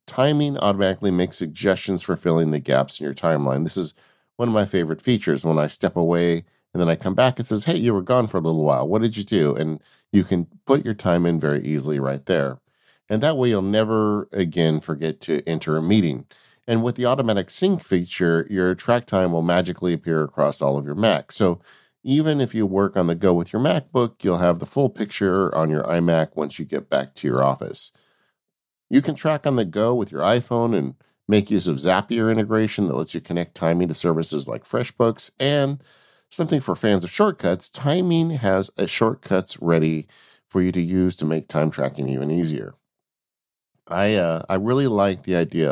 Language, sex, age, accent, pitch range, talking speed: English, male, 40-59, American, 80-115 Hz, 205 wpm